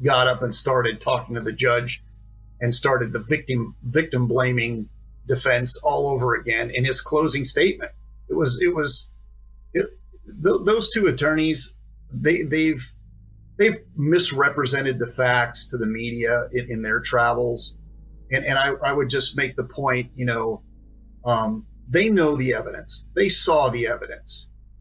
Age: 40-59